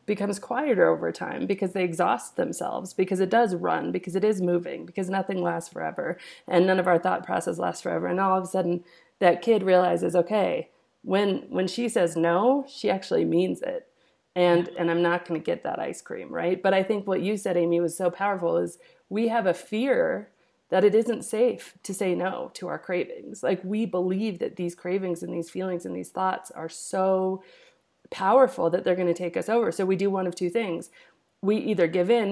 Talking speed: 215 wpm